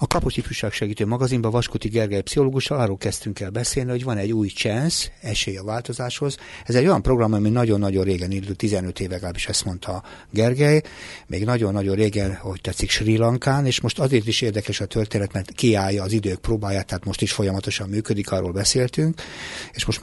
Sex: male